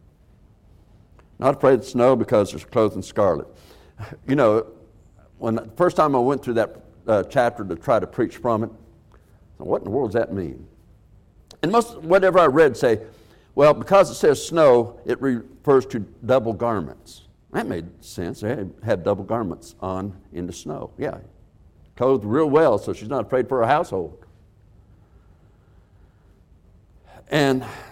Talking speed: 155 wpm